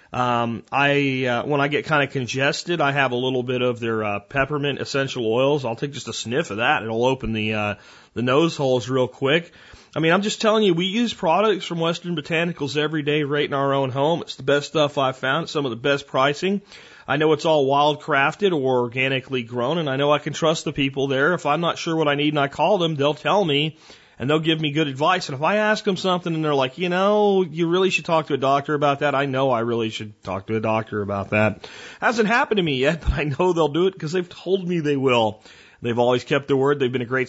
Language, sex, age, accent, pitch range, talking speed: English, male, 40-59, American, 125-155 Hz, 260 wpm